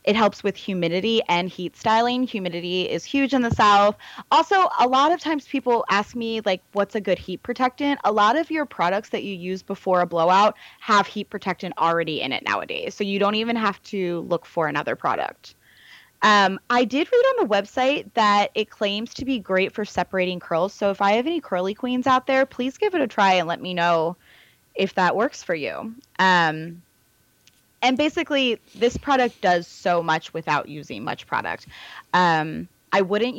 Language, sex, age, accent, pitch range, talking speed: English, female, 20-39, American, 175-230 Hz, 195 wpm